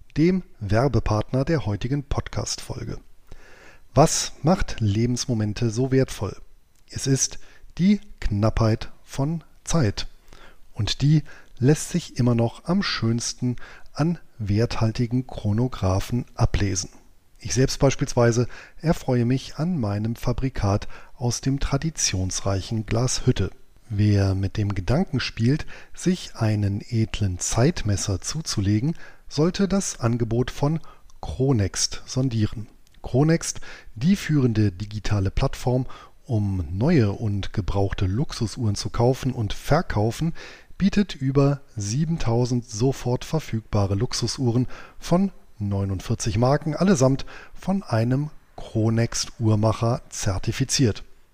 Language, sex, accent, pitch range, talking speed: German, male, German, 105-140 Hz, 100 wpm